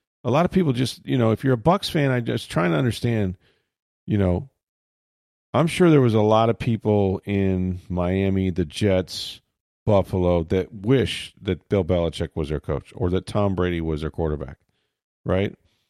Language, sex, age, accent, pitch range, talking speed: English, male, 40-59, American, 90-110 Hz, 180 wpm